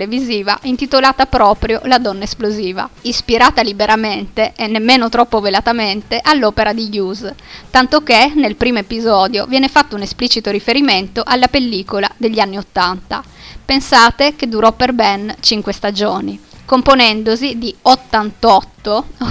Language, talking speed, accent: Italian, 120 wpm, native